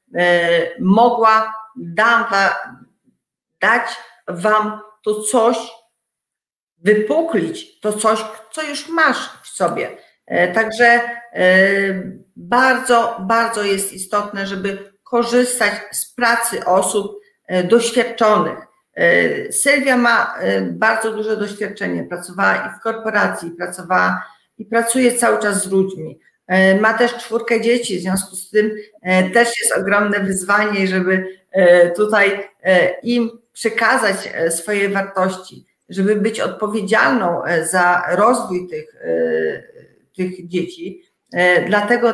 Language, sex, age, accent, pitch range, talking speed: Polish, female, 40-59, native, 185-230 Hz, 95 wpm